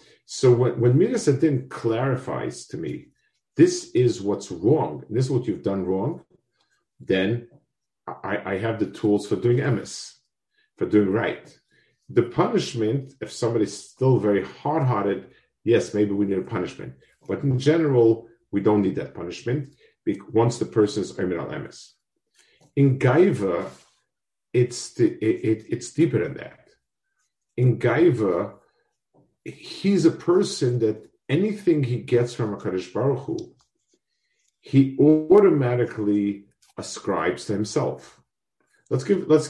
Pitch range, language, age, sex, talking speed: 105-150 Hz, English, 50-69, male, 130 wpm